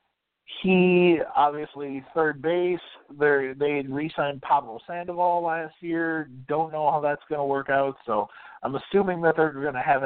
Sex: male